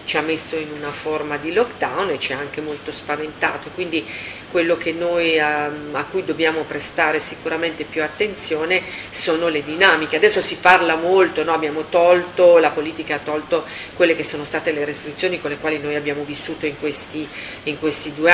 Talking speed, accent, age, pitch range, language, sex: 185 wpm, native, 40-59, 145-165 Hz, Italian, female